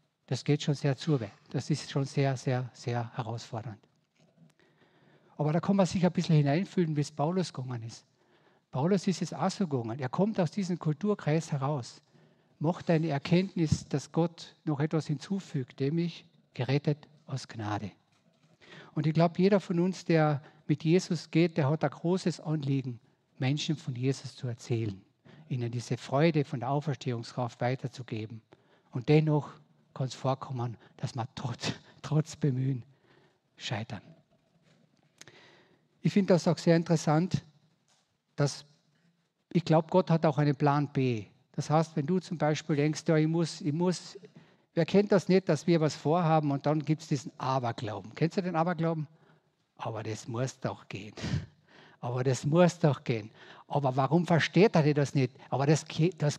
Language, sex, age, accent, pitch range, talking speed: German, male, 50-69, German, 135-170 Hz, 160 wpm